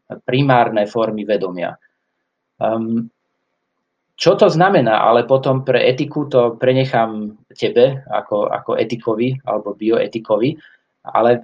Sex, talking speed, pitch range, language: male, 105 wpm, 115-140 Hz, Slovak